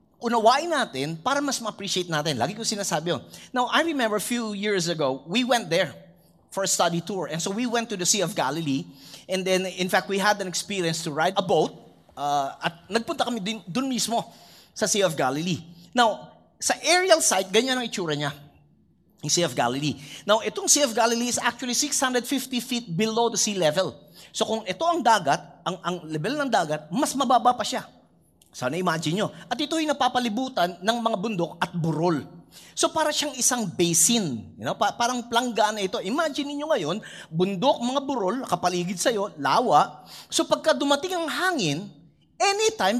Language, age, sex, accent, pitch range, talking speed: English, 30-49, male, Filipino, 170-245 Hz, 180 wpm